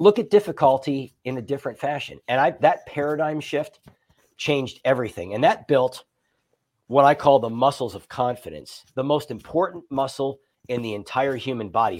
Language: English